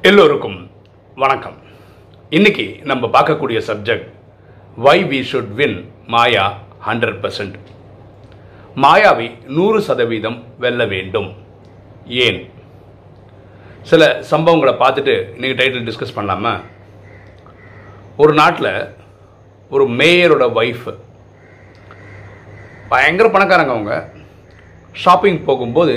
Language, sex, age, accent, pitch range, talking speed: Tamil, male, 40-59, native, 100-150 Hz, 85 wpm